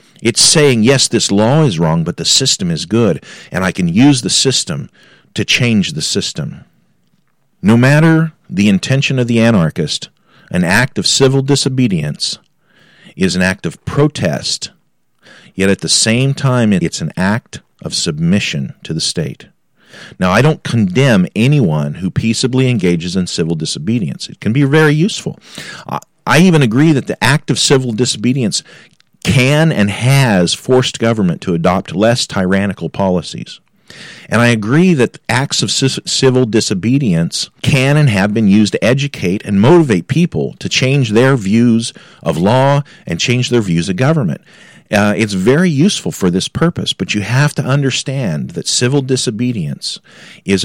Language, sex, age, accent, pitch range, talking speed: English, male, 40-59, American, 105-145 Hz, 160 wpm